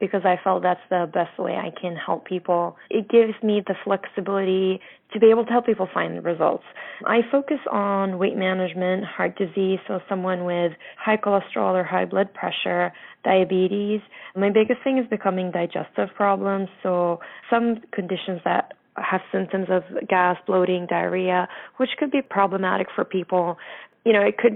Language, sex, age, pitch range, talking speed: English, female, 20-39, 180-210 Hz, 170 wpm